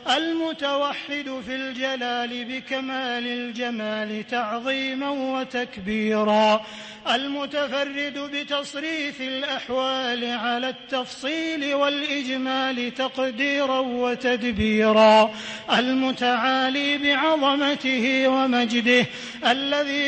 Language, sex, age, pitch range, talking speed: English, male, 30-49, 240-280 Hz, 55 wpm